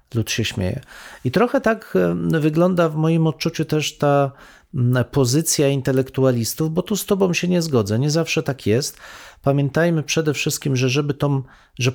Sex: male